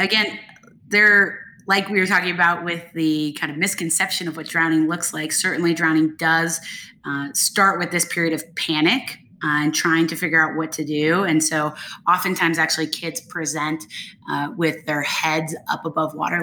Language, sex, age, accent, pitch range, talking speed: English, female, 20-39, American, 155-175 Hz, 180 wpm